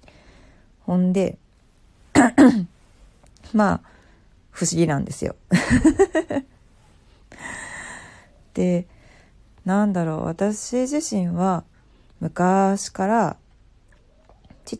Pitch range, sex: 150-200 Hz, female